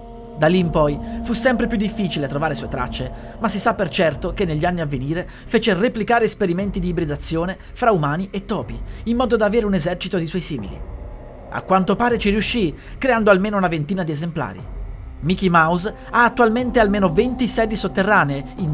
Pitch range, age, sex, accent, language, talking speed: 145-215 Hz, 30-49, male, native, Italian, 190 wpm